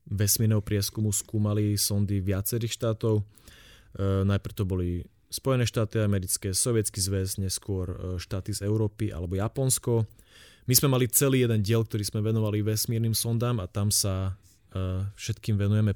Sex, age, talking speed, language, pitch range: male, 30-49, 135 wpm, Slovak, 95-115 Hz